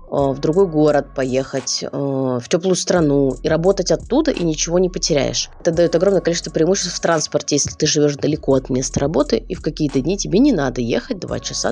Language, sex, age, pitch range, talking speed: Russian, female, 20-39, 150-195 Hz, 195 wpm